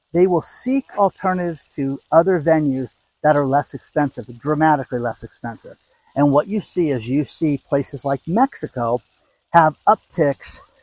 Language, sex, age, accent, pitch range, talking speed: English, male, 50-69, American, 130-175 Hz, 145 wpm